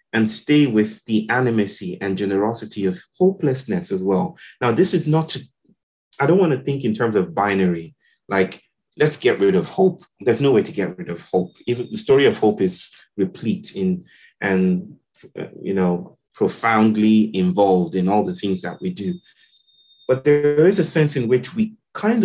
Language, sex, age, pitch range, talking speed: English, male, 30-49, 100-155 Hz, 180 wpm